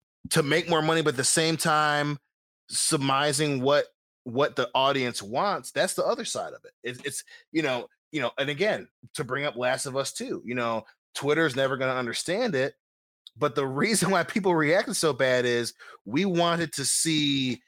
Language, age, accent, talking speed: English, 20-39, American, 190 wpm